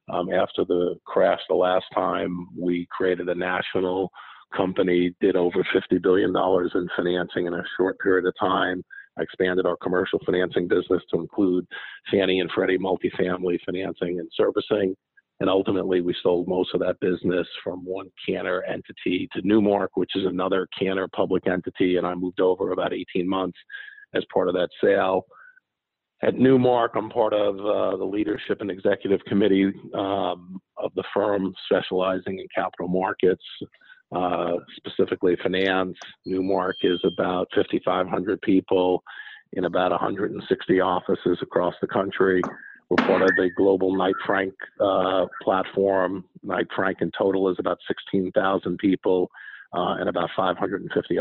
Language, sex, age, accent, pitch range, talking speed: English, male, 50-69, American, 90-100 Hz, 150 wpm